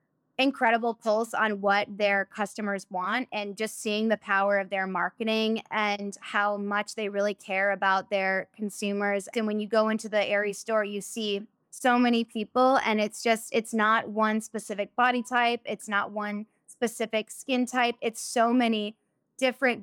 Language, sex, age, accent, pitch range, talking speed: English, female, 20-39, American, 205-230 Hz, 165 wpm